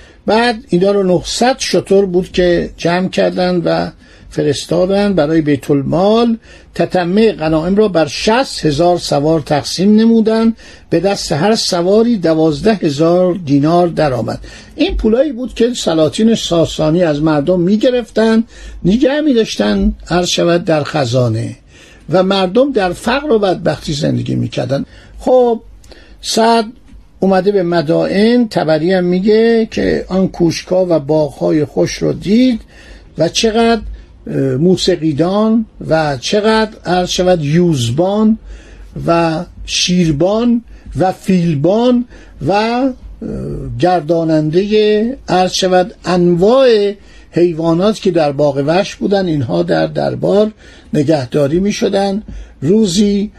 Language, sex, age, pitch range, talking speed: Persian, male, 60-79, 160-215 Hz, 110 wpm